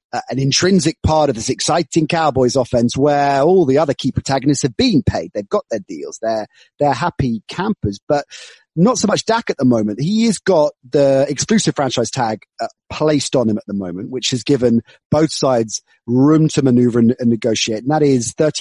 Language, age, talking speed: English, 30-49, 200 wpm